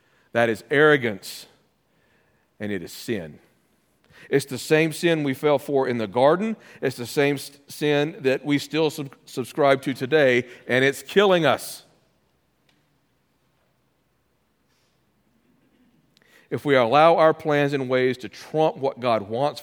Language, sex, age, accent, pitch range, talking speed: English, male, 50-69, American, 135-165 Hz, 130 wpm